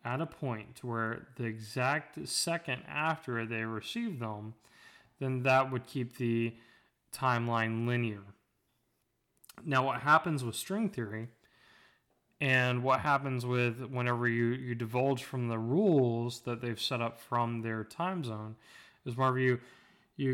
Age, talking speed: 20-39, 140 wpm